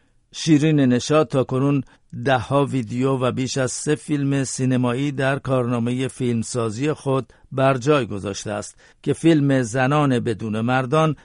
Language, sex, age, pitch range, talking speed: Persian, male, 50-69, 125-140 Hz, 135 wpm